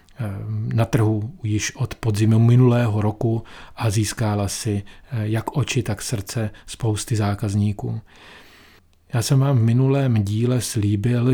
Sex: male